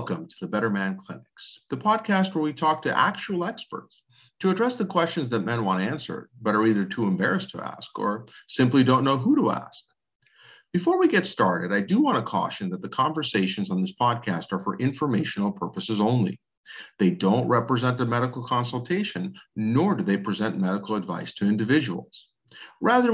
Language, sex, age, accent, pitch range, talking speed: English, male, 50-69, American, 115-175 Hz, 185 wpm